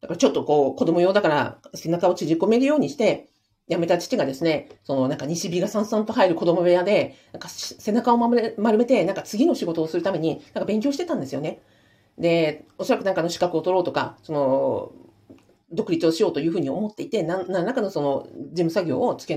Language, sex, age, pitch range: Japanese, female, 40-59, 165-265 Hz